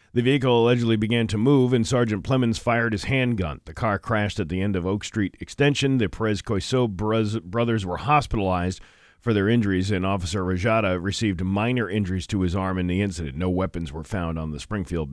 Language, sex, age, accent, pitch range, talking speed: English, male, 40-59, American, 95-115 Hz, 195 wpm